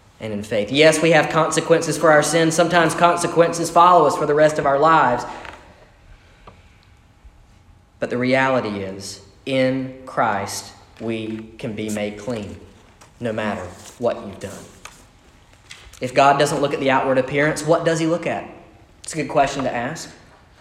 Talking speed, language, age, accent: 160 wpm, English, 40-59, American